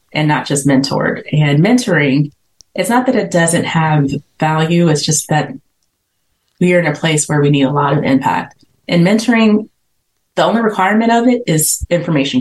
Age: 20-39